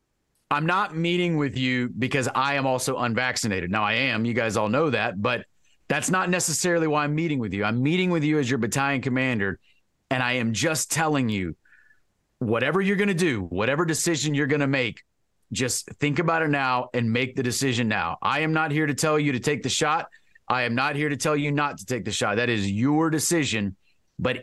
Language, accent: English, American